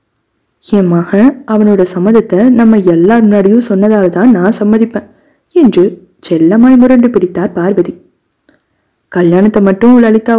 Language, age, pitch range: Tamil, 20-39, 180-220 Hz